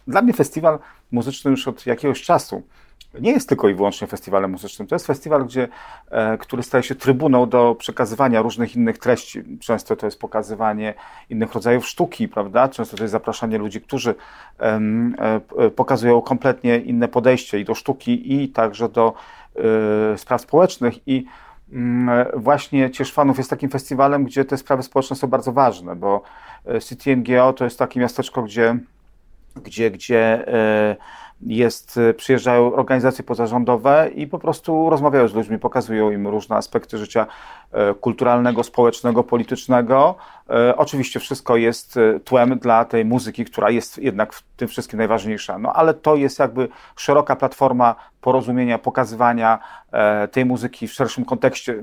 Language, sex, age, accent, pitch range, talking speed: Polish, male, 40-59, native, 115-135 Hz, 140 wpm